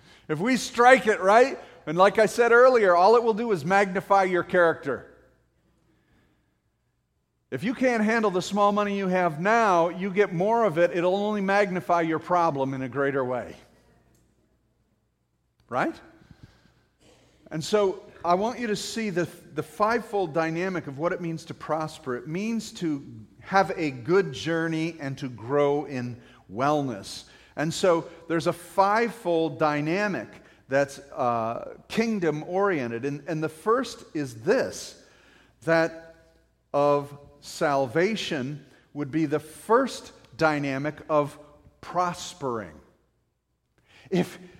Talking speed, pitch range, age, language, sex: 135 wpm, 145-200 Hz, 40-59, English, male